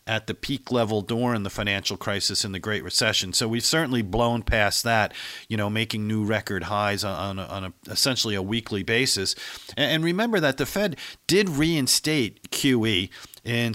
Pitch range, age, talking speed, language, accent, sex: 105-130 Hz, 50-69, 175 wpm, English, American, male